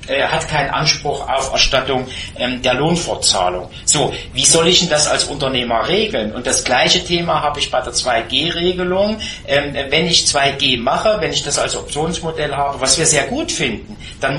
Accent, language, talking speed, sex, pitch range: German, German, 170 wpm, male, 130-165 Hz